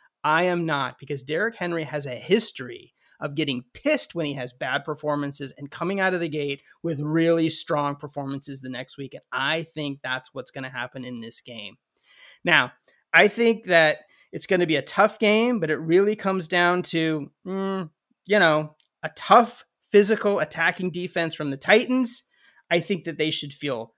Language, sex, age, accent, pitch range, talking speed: English, male, 30-49, American, 155-210 Hz, 190 wpm